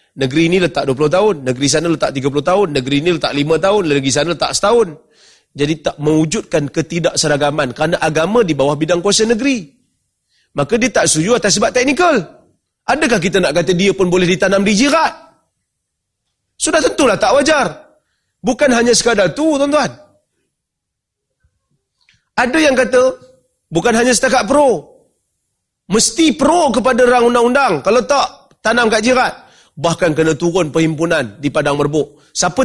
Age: 30-49